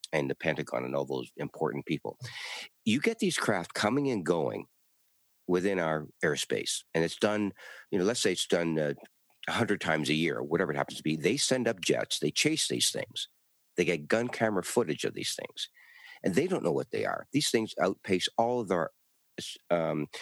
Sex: male